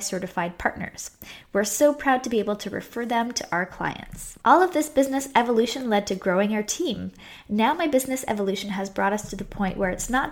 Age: 10-29